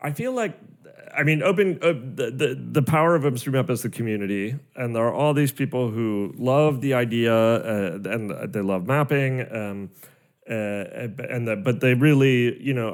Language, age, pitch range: English, 30-49, 110-145 Hz